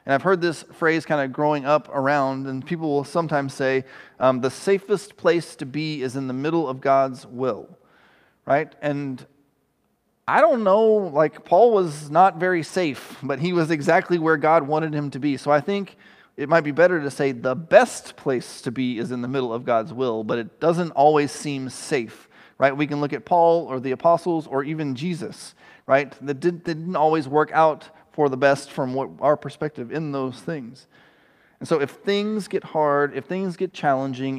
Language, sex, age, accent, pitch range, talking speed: English, male, 30-49, American, 135-175 Hz, 200 wpm